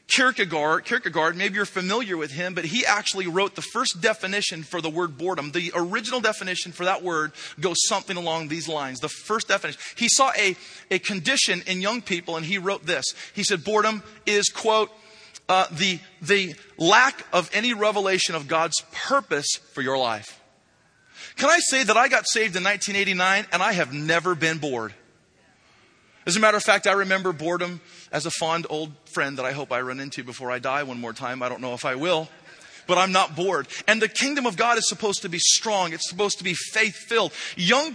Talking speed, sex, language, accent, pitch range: 200 wpm, male, English, American, 165-215 Hz